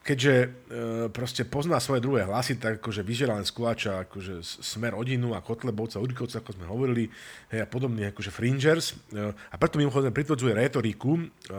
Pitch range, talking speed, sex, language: 110-135 Hz, 170 wpm, male, Slovak